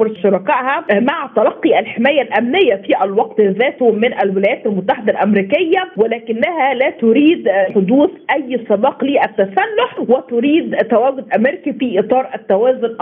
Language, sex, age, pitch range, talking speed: Arabic, female, 40-59, 205-275 Hz, 115 wpm